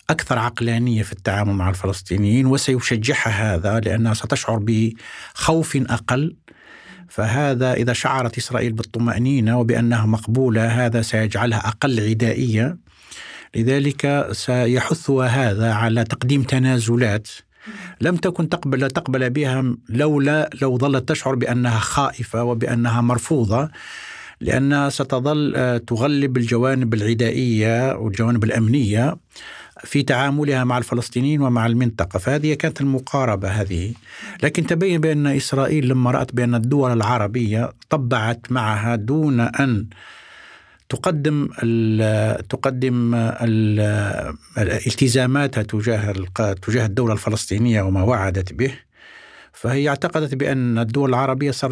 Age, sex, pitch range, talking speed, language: 60-79, male, 115-140 Hz, 100 wpm, Arabic